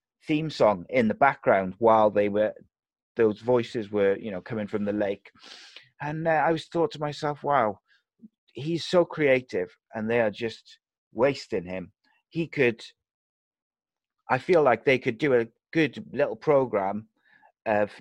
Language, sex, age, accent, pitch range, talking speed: English, male, 30-49, British, 105-125 Hz, 155 wpm